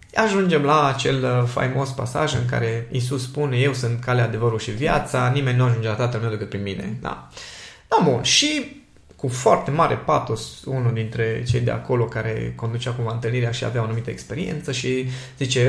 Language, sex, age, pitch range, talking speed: Romanian, male, 20-39, 125-165 Hz, 180 wpm